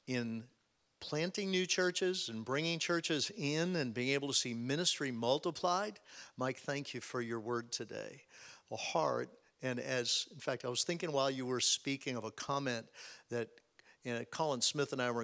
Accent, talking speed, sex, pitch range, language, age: American, 185 wpm, male, 125-155 Hz, English, 50-69